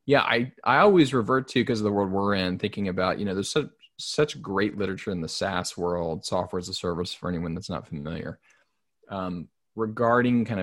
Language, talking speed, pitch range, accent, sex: English, 210 wpm, 95-115 Hz, American, male